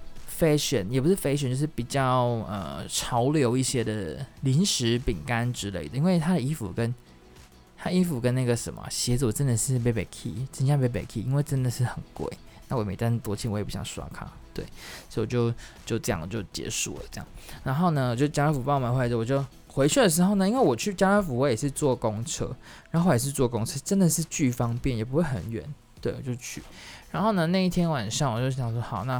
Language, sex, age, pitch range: Chinese, male, 20-39, 115-150 Hz